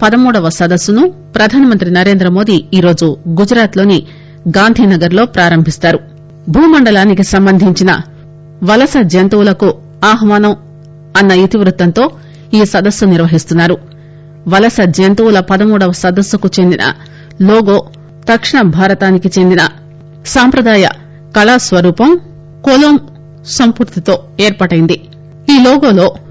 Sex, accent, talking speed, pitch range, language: female, Indian, 80 wpm, 165-225 Hz, English